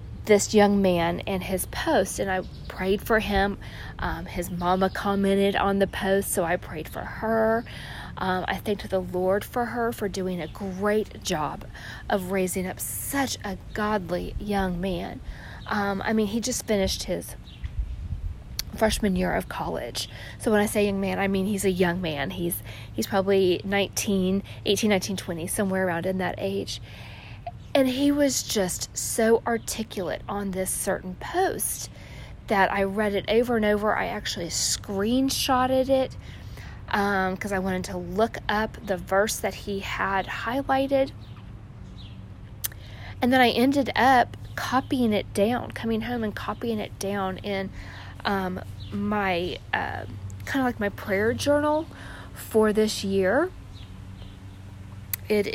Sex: female